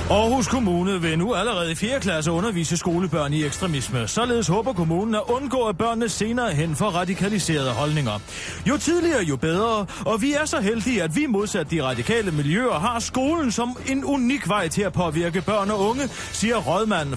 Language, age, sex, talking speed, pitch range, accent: Danish, 30-49, male, 185 wpm, 155-230 Hz, native